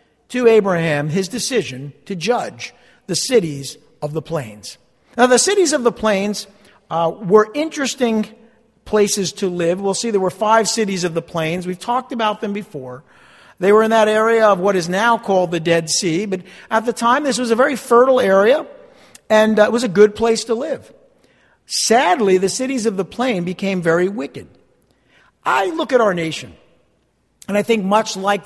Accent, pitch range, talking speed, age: American, 175-230 Hz, 185 wpm, 50-69